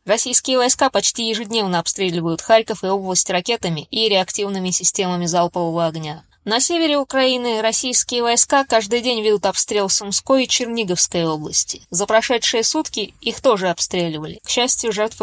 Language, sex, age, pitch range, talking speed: Russian, female, 20-39, 195-240 Hz, 145 wpm